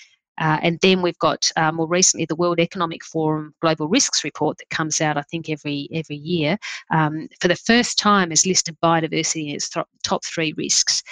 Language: English